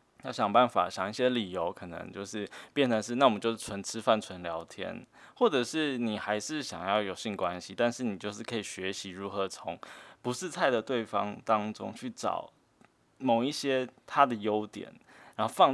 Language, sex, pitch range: Chinese, male, 100-135 Hz